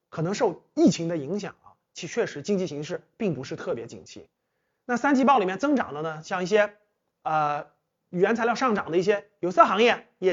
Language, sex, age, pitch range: Chinese, male, 30-49, 155-210 Hz